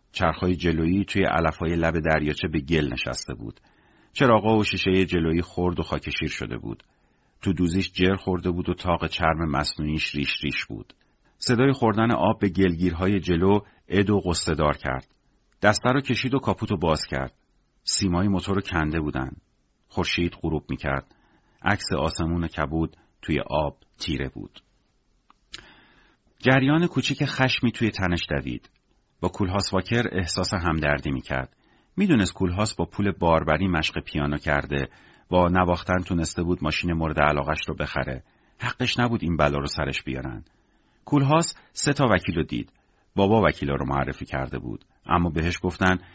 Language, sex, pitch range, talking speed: Persian, male, 75-100 Hz, 150 wpm